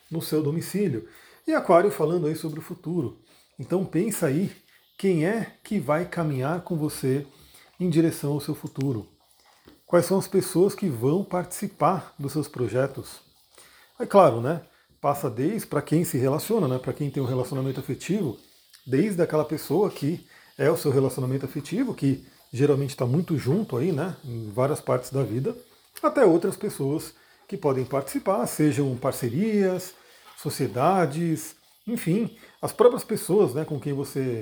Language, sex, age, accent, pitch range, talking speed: Portuguese, male, 40-59, Brazilian, 135-180 Hz, 155 wpm